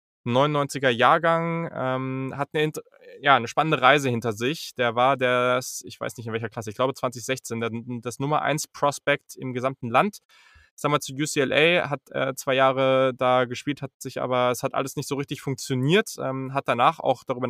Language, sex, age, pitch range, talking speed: German, male, 20-39, 120-145 Hz, 190 wpm